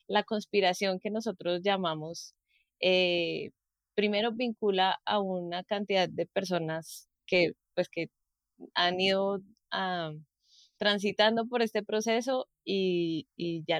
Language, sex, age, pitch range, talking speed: Spanish, female, 20-39, 175-210 Hz, 115 wpm